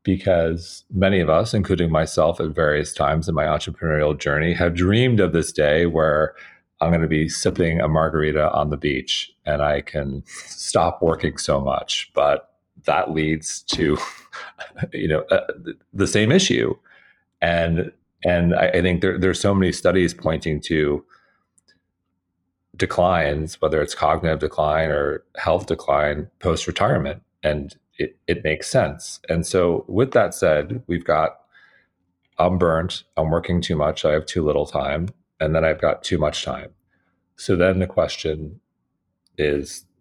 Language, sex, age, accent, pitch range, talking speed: English, male, 40-59, American, 80-95 Hz, 155 wpm